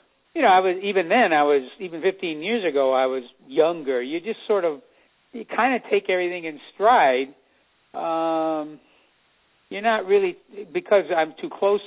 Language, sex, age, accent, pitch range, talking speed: English, male, 60-79, American, 145-200 Hz, 170 wpm